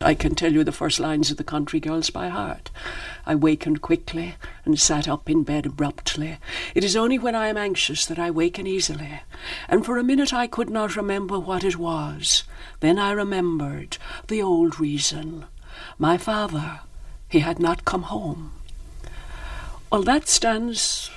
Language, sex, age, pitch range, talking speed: English, female, 60-79, 155-240 Hz, 170 wpm